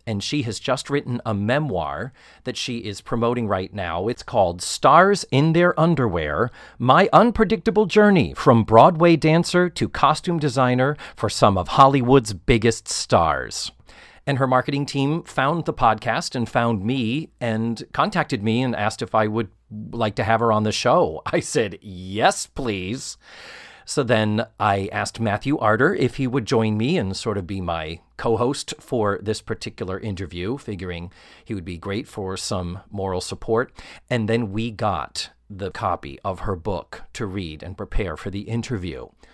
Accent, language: American, English